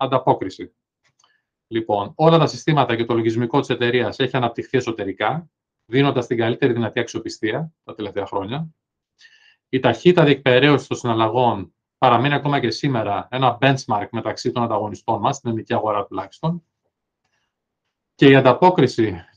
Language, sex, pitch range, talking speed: Greek, male, 115-155 Hz, 135 wpm